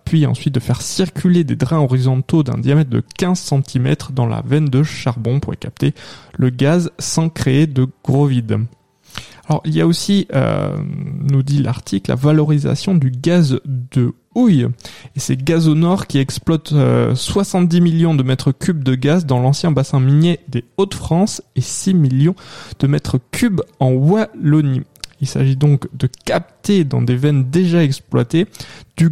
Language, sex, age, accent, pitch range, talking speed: French, male, 20-39, French, 130-160 Hz, 165 wpm